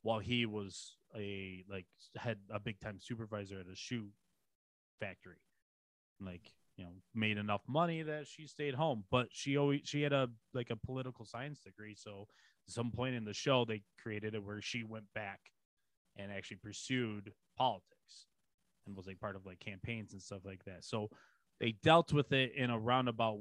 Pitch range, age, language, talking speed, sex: 105-125 Hz, 20-39, English, 185 wpm, male